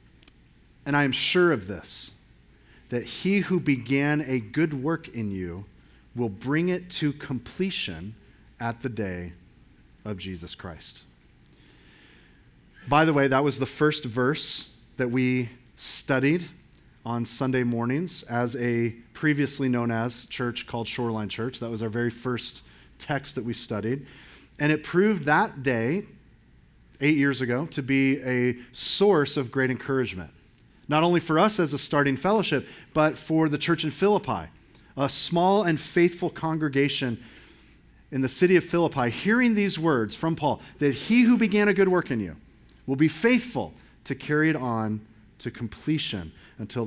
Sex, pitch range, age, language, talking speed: male, 115-155 Hz, 30-49, English, 155 wpm